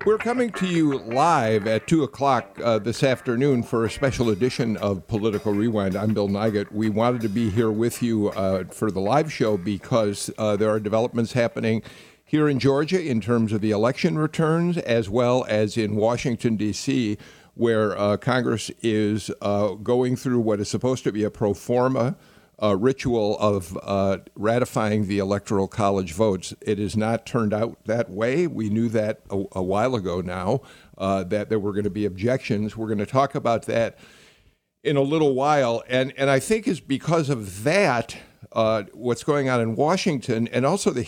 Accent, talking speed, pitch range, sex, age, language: American, 185 wpm, 105-135 Hz, male, 50-69, English